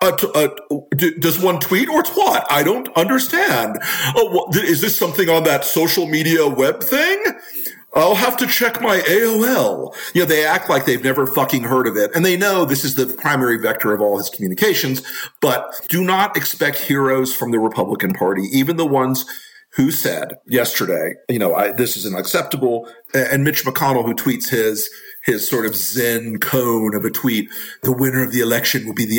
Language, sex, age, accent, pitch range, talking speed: English, male, 50-69, American, 125-180 Hz, 185 wpm